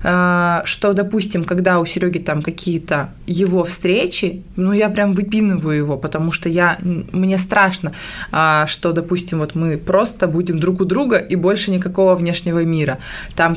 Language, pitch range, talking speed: Russian, 175-205 Hz, 150 wpm